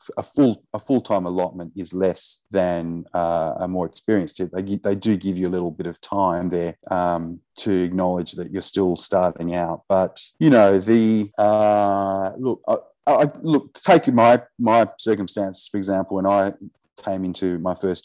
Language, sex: English, male